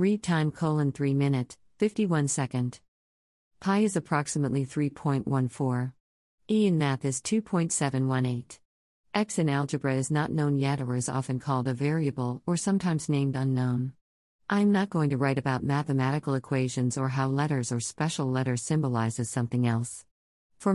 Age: 50-69